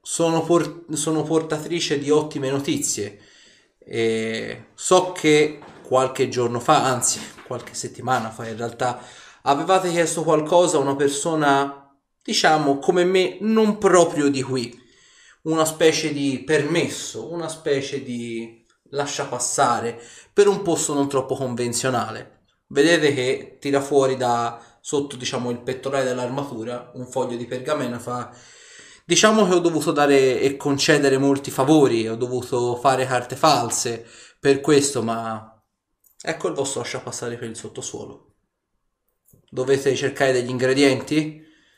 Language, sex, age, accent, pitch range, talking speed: Italian, male, 20-39, native, 125-155 Hz, 125 wpm